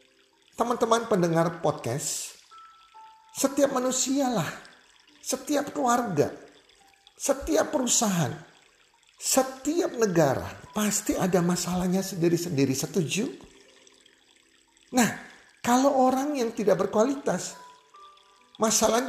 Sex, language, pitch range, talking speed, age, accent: male, Indonesian, 180-280 Hz, 70 wpm, 50-69, native